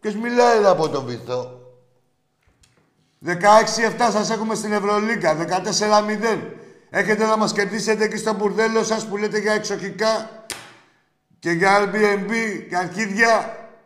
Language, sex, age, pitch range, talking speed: Greek, male, 60-79, 150-210 Hz, 125 wpm